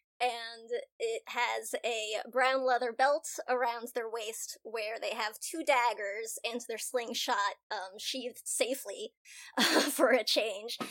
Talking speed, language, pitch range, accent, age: 130 wpm, English, 230-320 Hz, American, 20-39